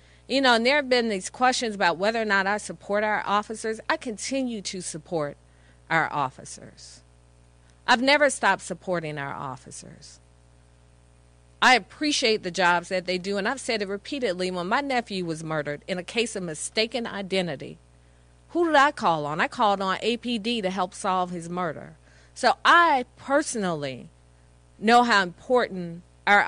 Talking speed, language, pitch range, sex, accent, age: 165 wpm, English, 150-240 Hz, female, American, 40-59